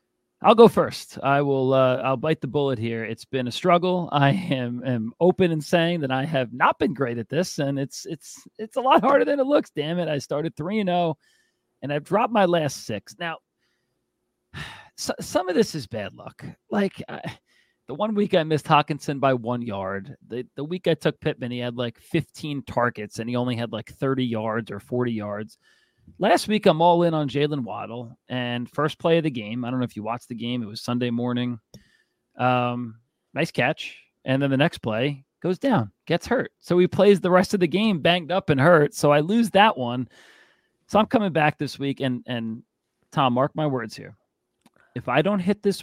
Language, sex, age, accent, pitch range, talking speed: English, male, 40-59, American, 120-170 Hz, 215 wpm